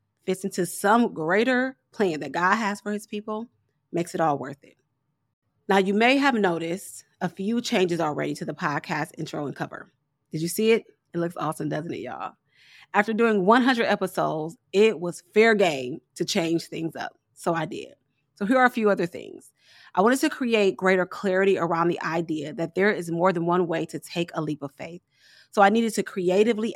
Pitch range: 160-205 Hz